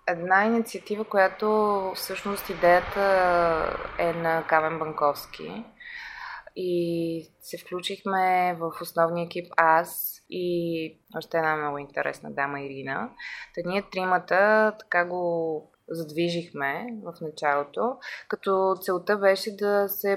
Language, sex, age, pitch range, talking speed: Bulgarian, female, 20-39, 165-200 Hz, 105 wpm